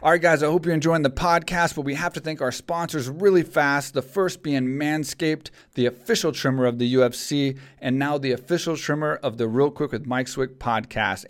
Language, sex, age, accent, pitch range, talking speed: English, male, 40-59, American, 130-160 Hz, 220 wpm